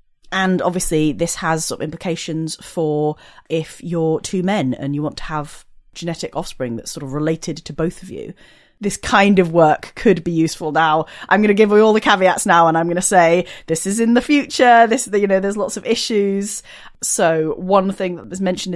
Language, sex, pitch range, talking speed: English, female, 155-205 Hz, 215 wpm